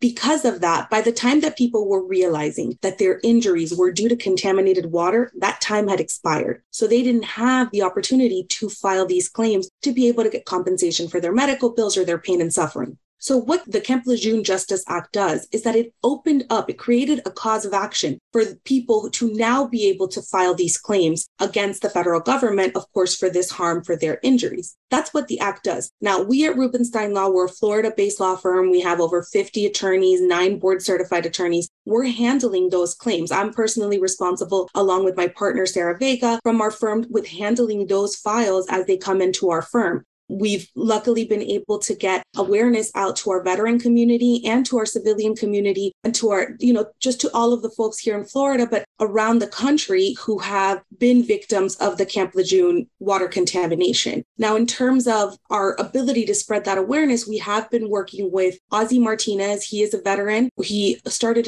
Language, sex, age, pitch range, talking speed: English, female, 30-49, 190-235 Hz, 200 wpm